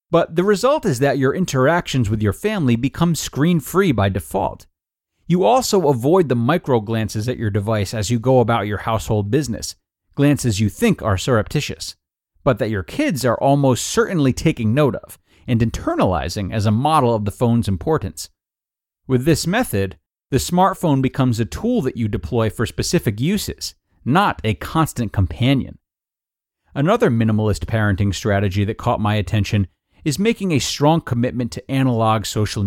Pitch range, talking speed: 100-130 Hz, 160 wpm